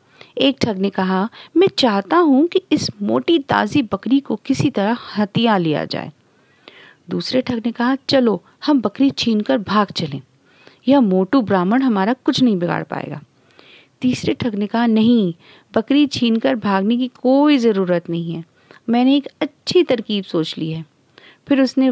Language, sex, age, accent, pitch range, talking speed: Hindi, female, 40-59, native, 195-290 Hz, 160 wpm